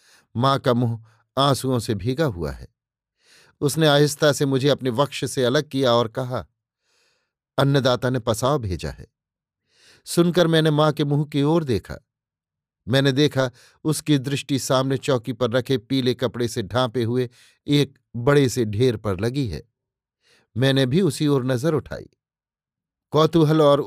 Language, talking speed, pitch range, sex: Hindi, 150 wpm, 120-145 Hz, male